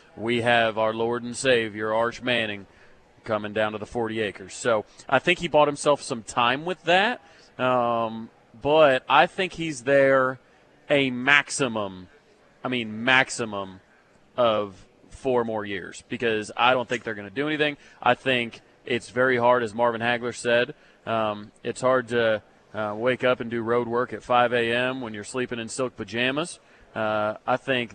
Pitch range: 110-130 Hz